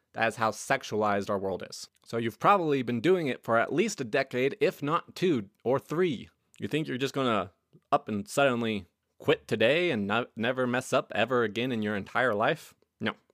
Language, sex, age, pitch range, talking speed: English, male, 20-39, 110-150 Hz, 200 wpm